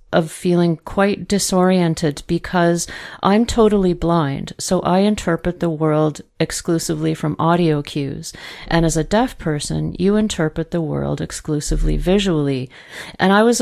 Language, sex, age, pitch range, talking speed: English, female, 40-59, 165-205 Hz, 135 wpm